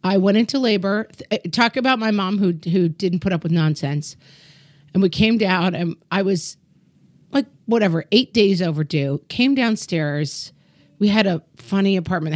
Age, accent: 40-59, American